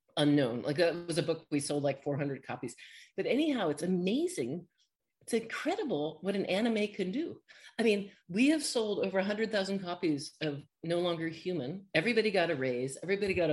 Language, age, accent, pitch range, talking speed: Turkish, 40-59, American, 150-220 Hz, 180 wpm